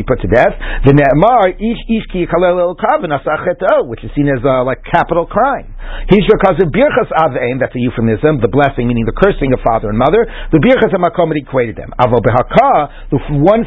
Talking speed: 110 wpm